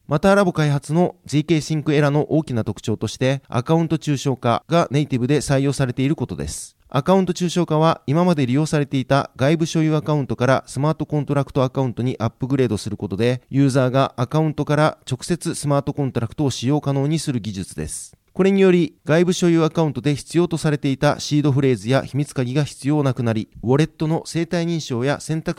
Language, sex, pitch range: Japanese, male, 125-155 Hz